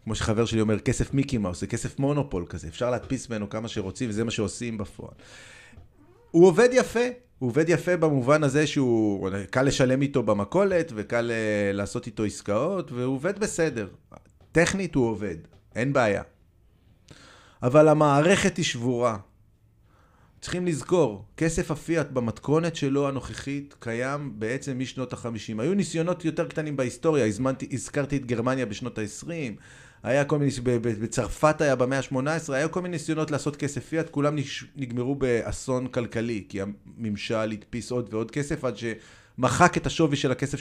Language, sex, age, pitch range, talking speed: Hebrew, male, 30-49, 115-155 Hz, 150 wpm